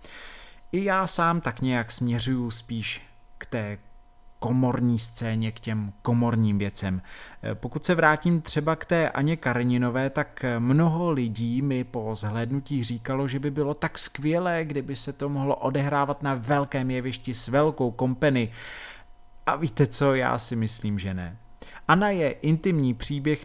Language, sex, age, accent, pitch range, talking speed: Czech, male, 30-49, native, 115-145 Hz, 150 wpm